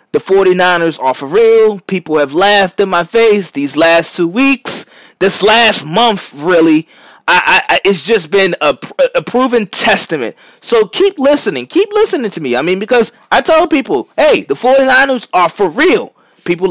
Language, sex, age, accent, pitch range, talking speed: English, male, 20-39, American, 185-250 Hz, 175 wpm